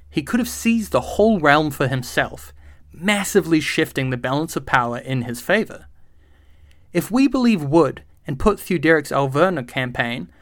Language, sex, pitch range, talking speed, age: English, male, 115-175 Hz, 155 wpm, 30-49